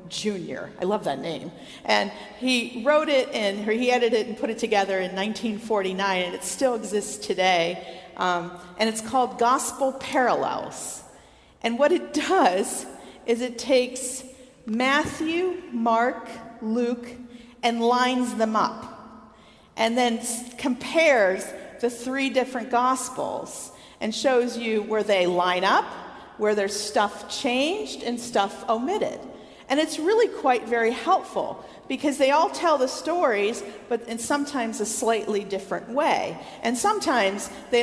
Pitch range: 220-280 Hz